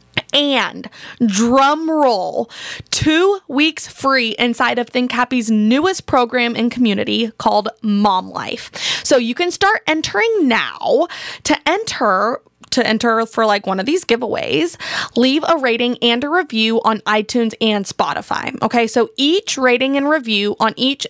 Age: 20-39